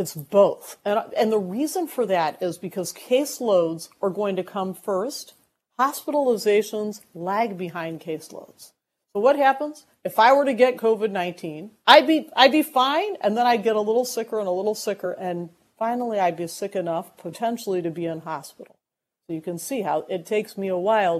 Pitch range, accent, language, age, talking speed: 170-225 Hz, American, English, 50-69, 185 wpm